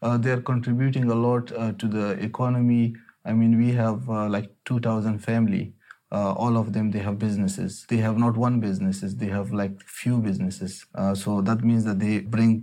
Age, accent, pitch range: 30-49, Indian, 100-115 Hz